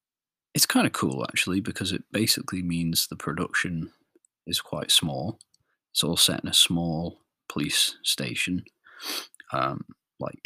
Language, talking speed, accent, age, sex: English, 140 wpm, British, 20-39, male